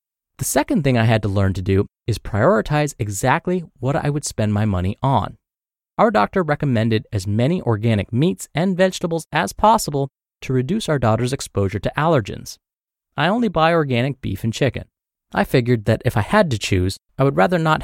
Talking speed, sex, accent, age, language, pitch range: 190 wpm, male, American, 30-49, English, 110-165 Hz